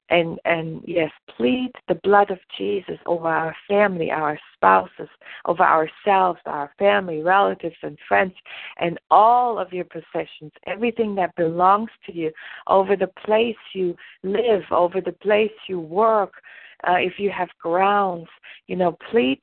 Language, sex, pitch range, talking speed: English, female, 170-205 Hz, 150 wpm